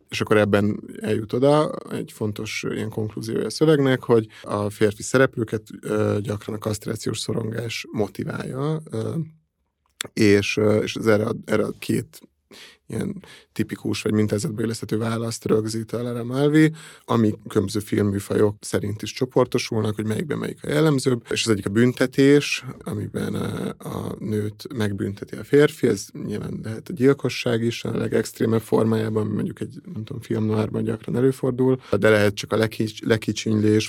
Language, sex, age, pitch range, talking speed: Hungarian, male, 30-49, 105-125 Hz, 140 wpm